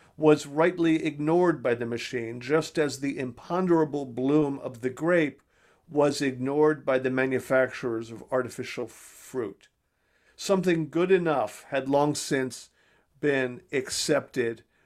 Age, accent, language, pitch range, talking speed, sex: 50-69, American, English, 135-165 Hz, 120 wpm, male